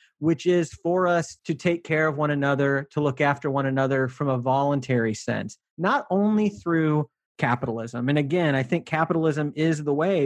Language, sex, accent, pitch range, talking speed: English, male, American, 130-160 Hz, 180 wpm